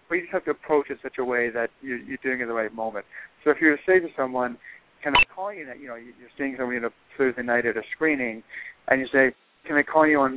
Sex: male